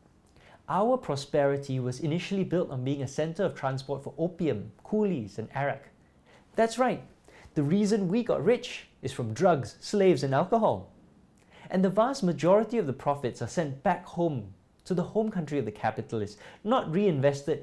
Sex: male